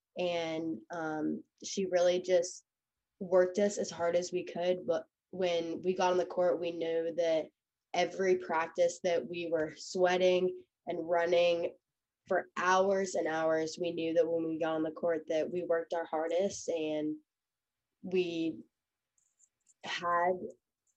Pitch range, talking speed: 165-185 Hz, 145 wpm